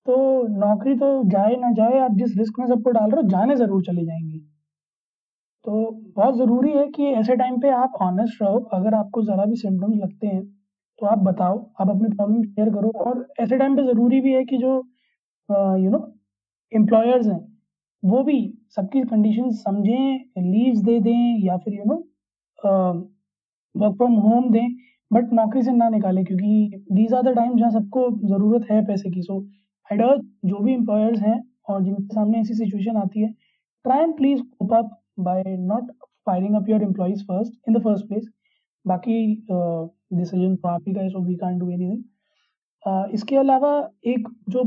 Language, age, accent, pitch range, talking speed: Hindi, 20-39, native, 195-240 Hz, 155 wpm